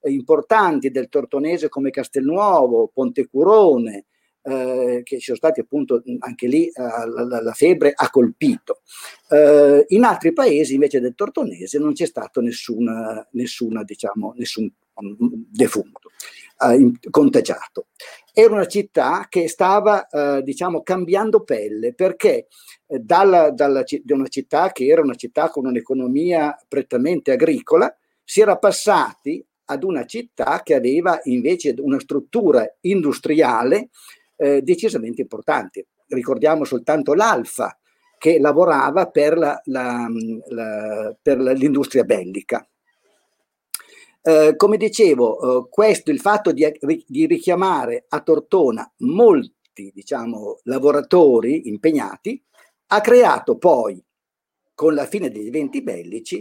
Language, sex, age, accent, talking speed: Italian, male, 50-69, native, 120 wpm